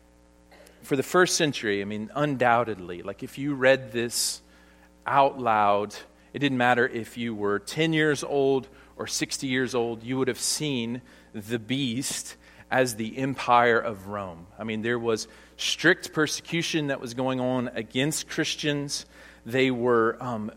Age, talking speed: 40-59, 155 wpm